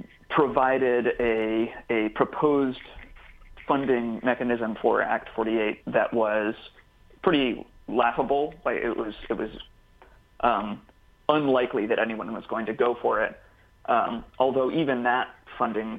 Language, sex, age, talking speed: English, male, 30-49, 125 wpm